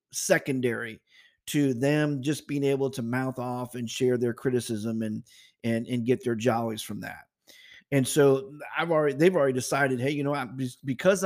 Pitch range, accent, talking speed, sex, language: 125-150 Hz, American, 175 wpm, male, English